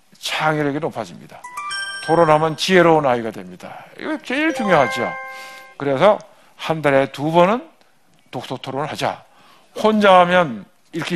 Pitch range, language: 135-190 Hz, Korean